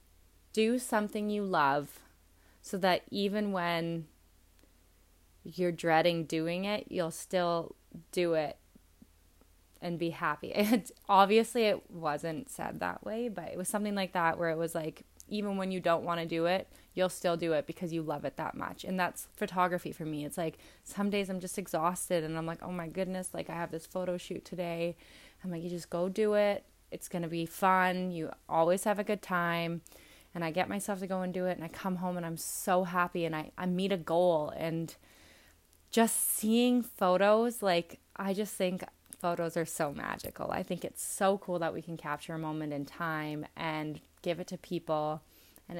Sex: female